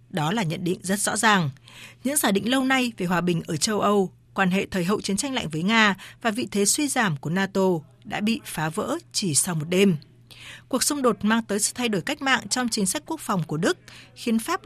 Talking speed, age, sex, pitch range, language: 250 wpm, 20-39, female, 170-225 Hz, Vietnamese